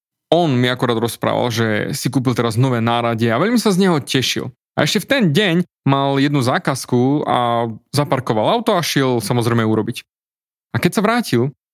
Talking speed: 180 wpm